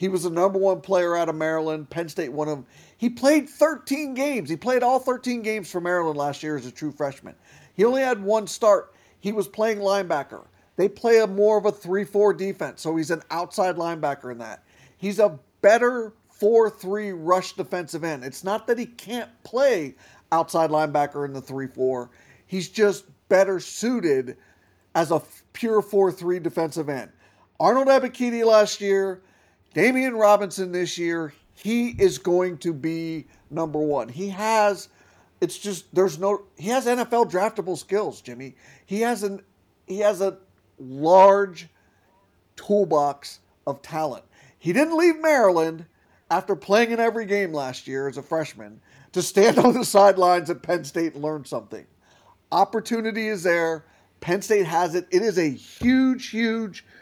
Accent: American